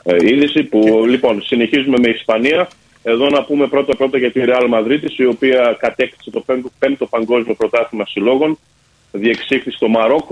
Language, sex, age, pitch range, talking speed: Greek, male, 30-49, 110-130 Hz, 155 wpm